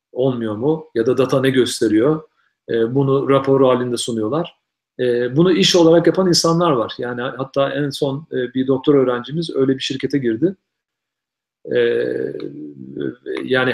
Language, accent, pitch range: Turkish, native, 120-155 Hz